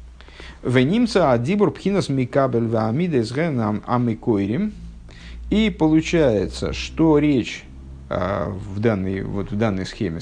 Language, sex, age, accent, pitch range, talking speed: Russian, male, 50-69, native, 110-170 Hz, 65 wpm